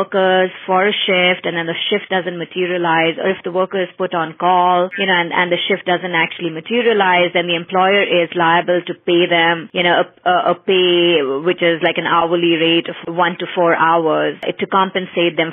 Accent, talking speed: Indian, 215 wpm